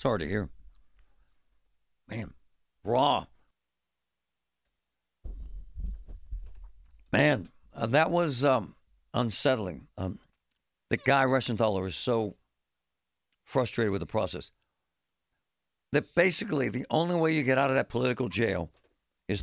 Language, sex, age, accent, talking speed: English, male, 60-79, American, 110 wpm